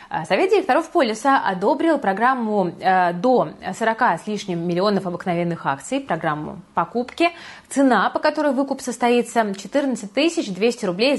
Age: 20-39